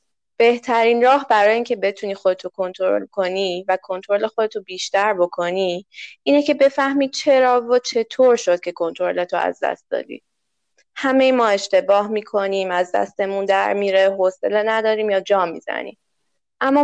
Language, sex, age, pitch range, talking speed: Persian, female, 20-39, 185-230 Hz, 145 wpm